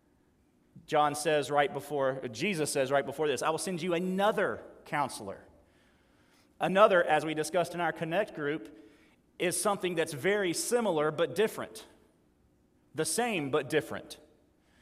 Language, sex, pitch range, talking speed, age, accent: English, male, 145-205 Hz, 140 wpm, 40-59, American